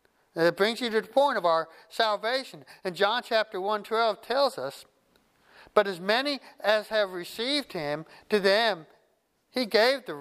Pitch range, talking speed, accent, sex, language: 175-225 Hz, 165 wpm, American, male, English